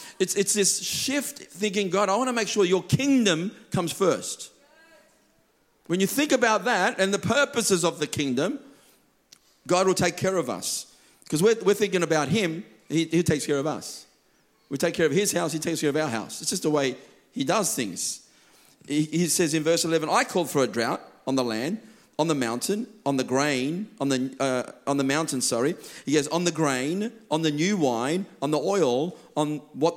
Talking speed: 210 wpm